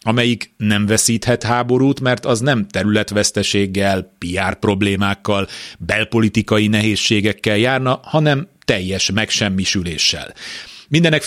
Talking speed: 90 wpm